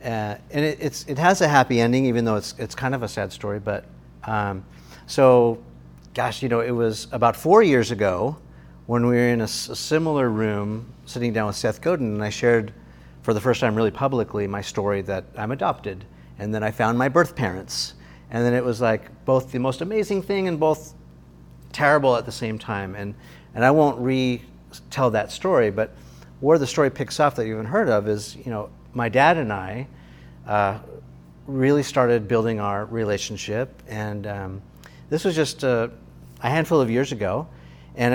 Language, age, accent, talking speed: English, 50-69, American, 195 wpm